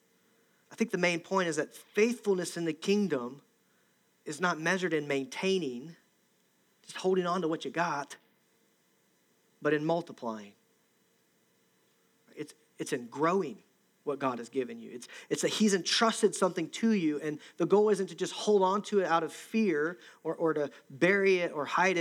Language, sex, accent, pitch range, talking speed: English, male, American, 145-185 Hz, 170 wpm